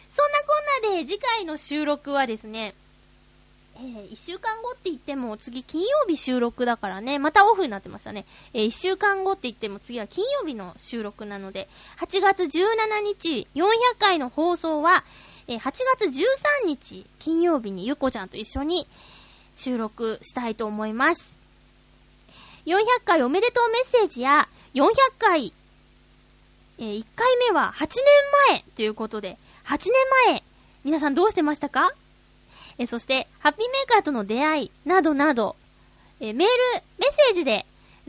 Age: 20-39